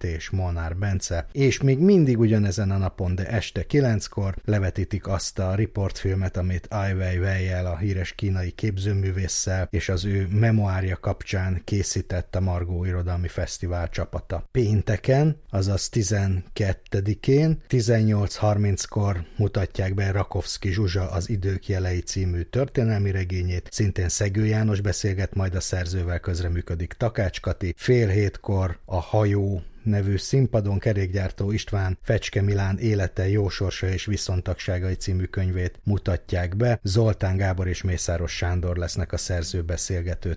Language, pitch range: Hungarian, 90-105 Hz